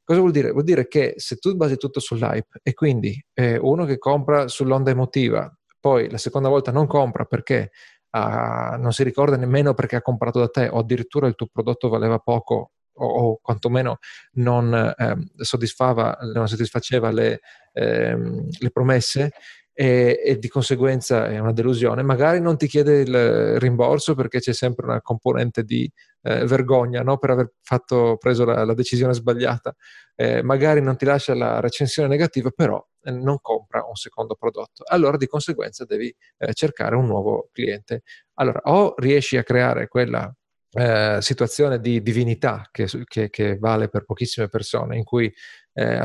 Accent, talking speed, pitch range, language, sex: native, 165 wpm, 120-140 Hz, Italian, male